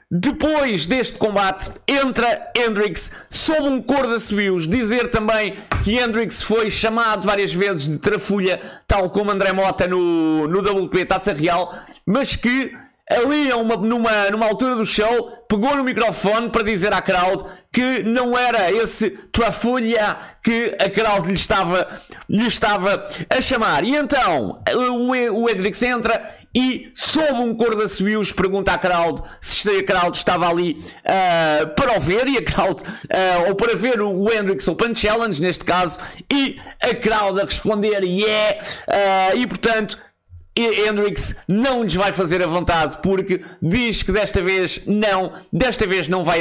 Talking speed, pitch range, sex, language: 160 wpm, 185-235 Hz, male, Portuguese